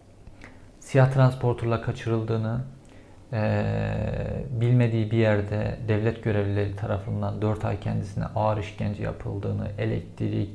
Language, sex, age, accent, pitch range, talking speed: Turkish, male, 50-69, native, 105-120 Hz, 95 wpm